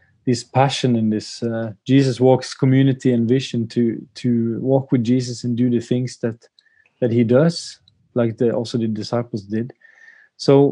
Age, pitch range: 20-39, 120-145 Hz